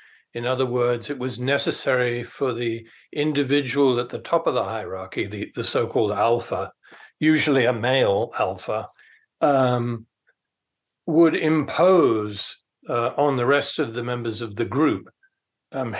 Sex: male